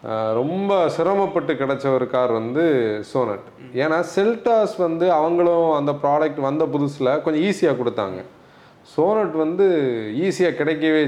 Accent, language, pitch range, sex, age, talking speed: native, Tamil, 145-185 Hz, male, 30-49, 120 wpm